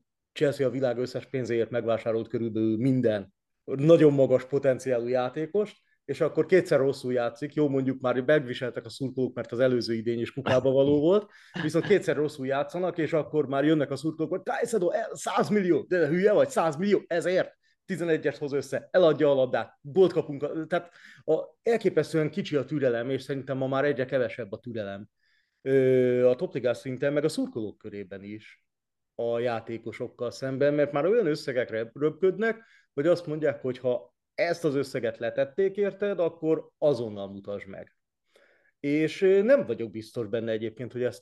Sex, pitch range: male, 120-155 Hz